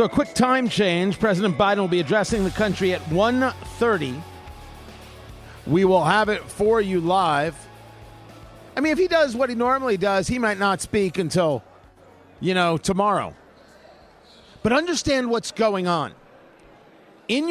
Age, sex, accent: 50-69, male, American